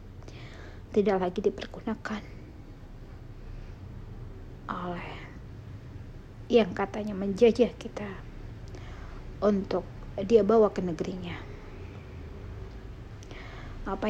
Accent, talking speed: native, 60 wpm